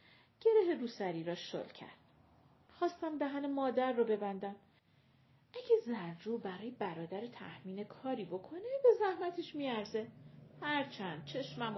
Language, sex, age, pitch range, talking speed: Persian, female, 40-59, 190-260 Hz, 110 wpm